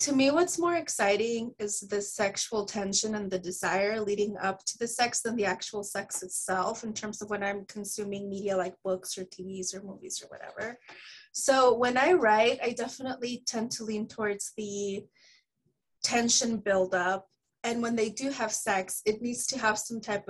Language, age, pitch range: English, 20-39, 200-235 Hz